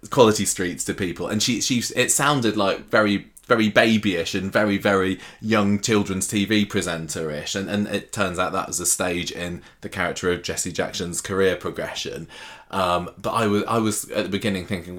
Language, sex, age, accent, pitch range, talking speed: English, male, 20-39, British, 90-105 Hz, 190 wpm